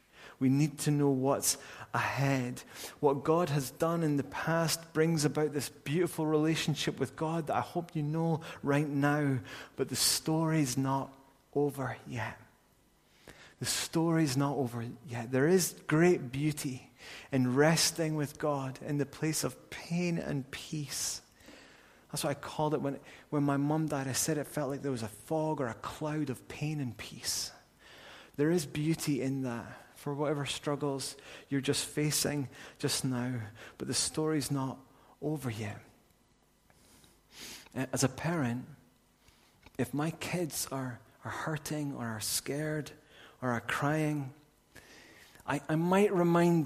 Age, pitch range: 30-49, 125-155 Hz